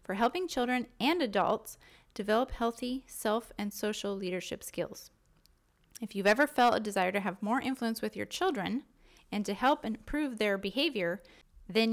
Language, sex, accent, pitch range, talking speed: English, female, American, 200-250 Hz, 155 wpm